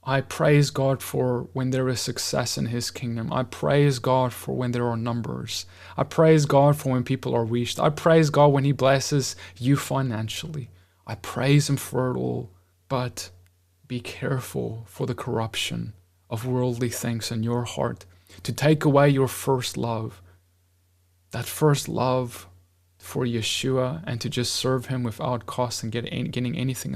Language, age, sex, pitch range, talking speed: English, 20-39, male, 105-135 Hz, 165 wpm